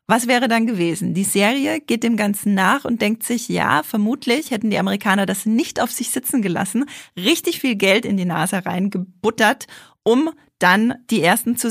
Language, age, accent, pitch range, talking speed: German, 30-49, German, 180-220 Hz, 185 wpm